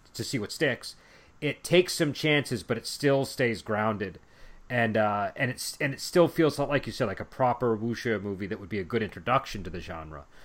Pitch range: 100-130 Hz